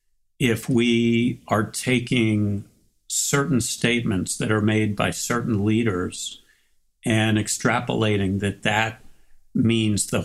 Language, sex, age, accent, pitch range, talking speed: English, male, 60-79, American, 105-120 Hz, 105 wpm